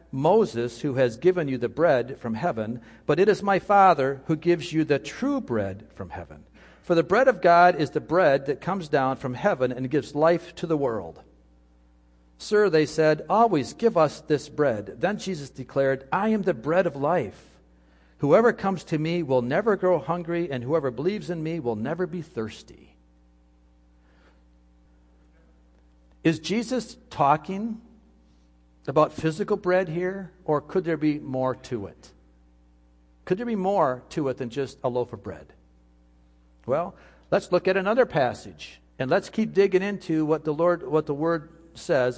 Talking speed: 170 wpm